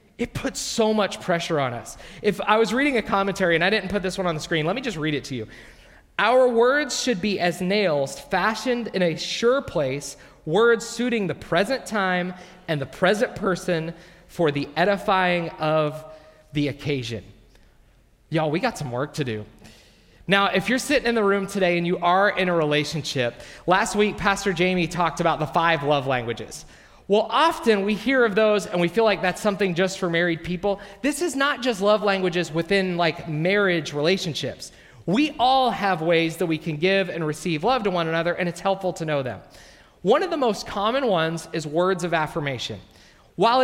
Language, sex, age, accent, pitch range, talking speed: English, male, 20-39, American, 155-210 Hz, 195 wpm